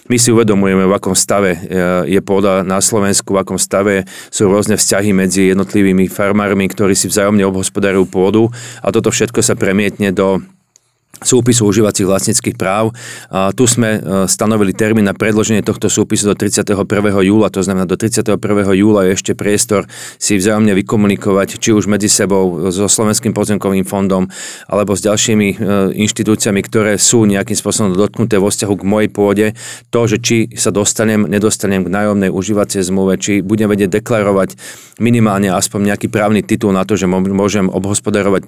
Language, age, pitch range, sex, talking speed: Slovak, 40-59, 100-110 Hz, male, 160 wpm